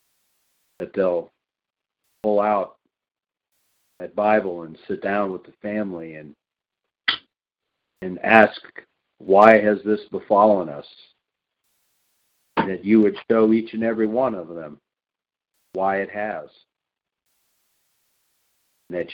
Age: 50-69